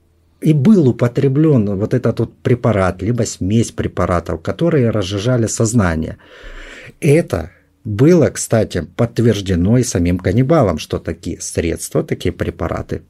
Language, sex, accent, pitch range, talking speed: Russian, male, native, 100-155 Hz, 115 wpm